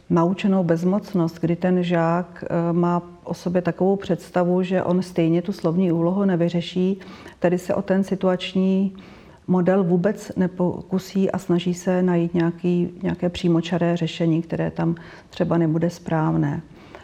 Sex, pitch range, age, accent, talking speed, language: female, 170-190 Hz, 40-59, native, 135 wpm, Czech